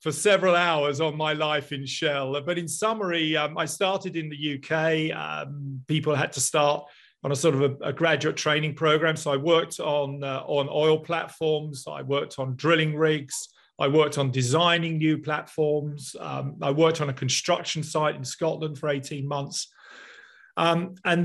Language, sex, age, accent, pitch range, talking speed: English, male, 40-59, British, 140-165 Hz, 180 wpm